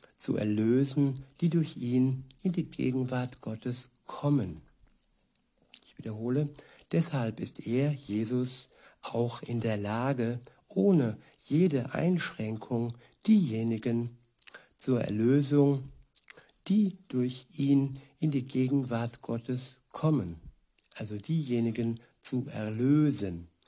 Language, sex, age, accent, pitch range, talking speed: German, male, 60-79, German, 115-140 Hz, 95 wpm